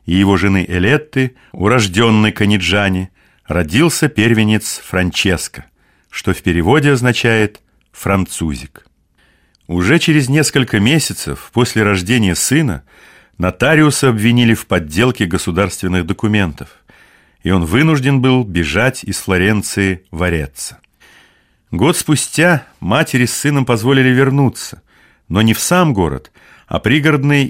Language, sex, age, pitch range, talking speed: Russian, male, 40-59, 90-130 Hz, 110 wpm